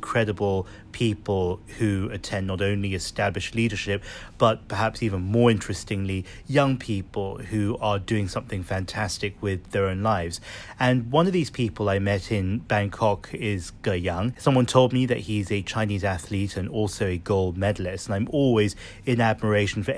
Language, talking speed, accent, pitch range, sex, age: English, 165 wpm, British, 100-115 Hz, male, 30-49